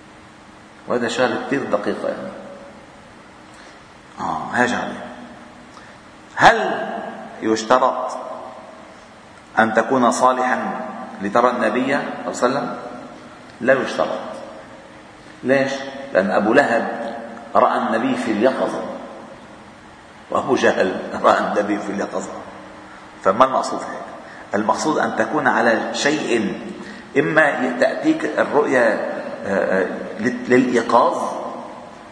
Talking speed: 85 wpm